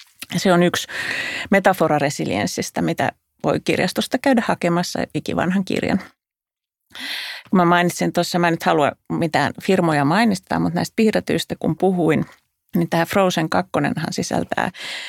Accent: native